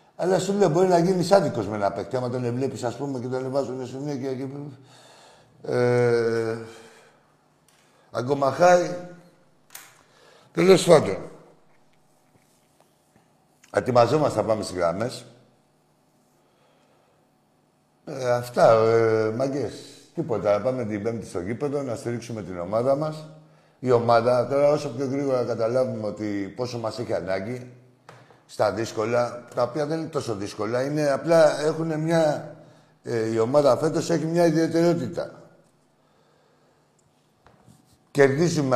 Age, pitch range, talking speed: 60-79, 120-155 Hz, 120 wpm